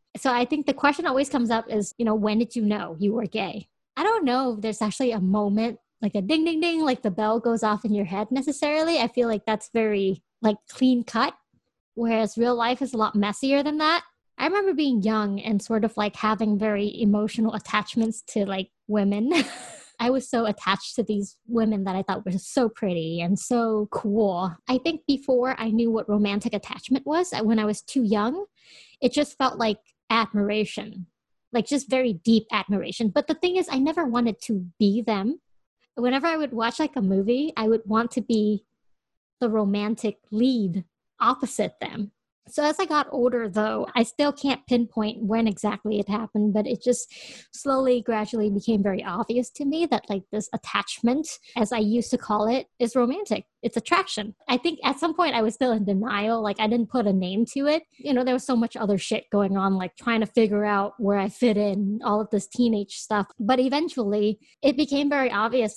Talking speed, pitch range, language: 205 wpm, 210-255 Hz, English